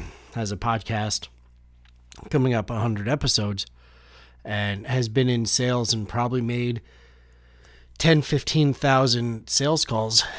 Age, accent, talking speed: 30-49, American, 115 wpm